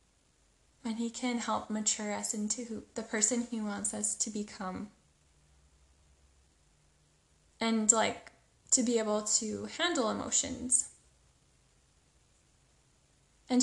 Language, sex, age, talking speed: English, female, 10-29, 105 wpm